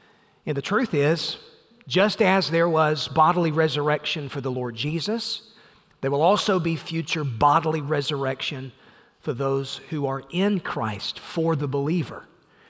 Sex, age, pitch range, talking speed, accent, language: male, 40-59, 140-180 Hz, 140 wpm, American, English